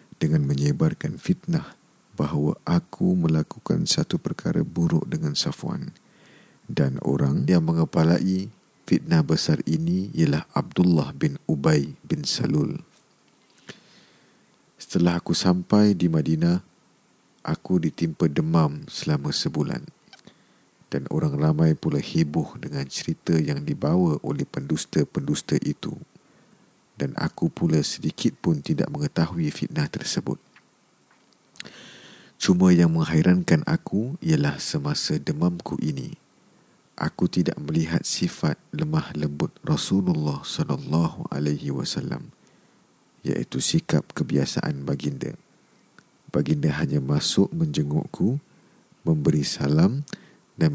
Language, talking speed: Malay, 100 wpm